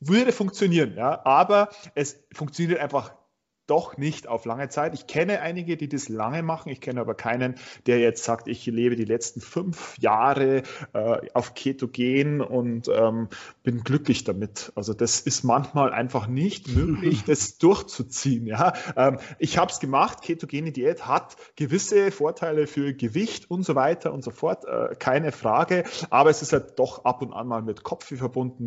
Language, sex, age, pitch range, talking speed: German, male, 30-49, 120-155 Hz, 170 wpm